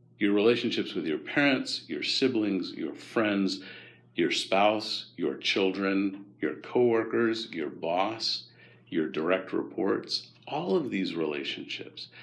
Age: 50-69